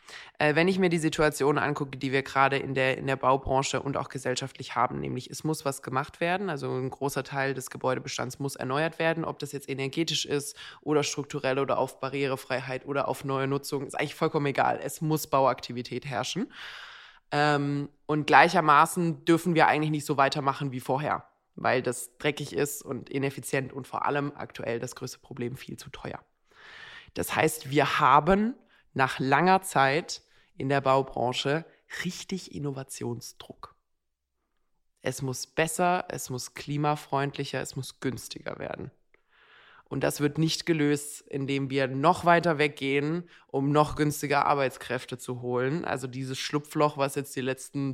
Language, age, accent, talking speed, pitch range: German, 20-39, German, 155 wpm, 135-150 Hz